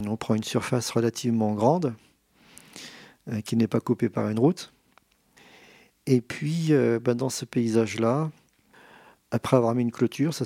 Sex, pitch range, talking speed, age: male, 110-130 Hz, 145 wpm, 40-59